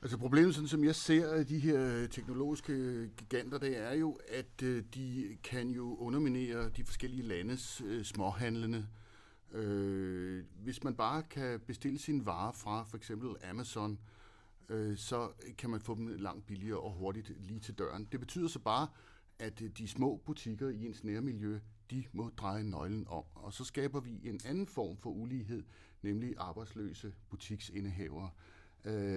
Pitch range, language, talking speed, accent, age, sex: 100-130 Hz, Danish, 150 wpm, native, 60-79, male